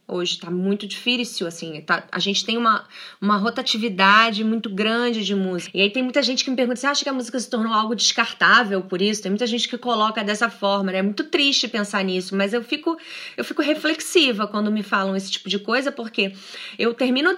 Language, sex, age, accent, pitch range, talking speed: Portuguese, female, 20-39, Brazilian, 200-265 Hz, 215 wpm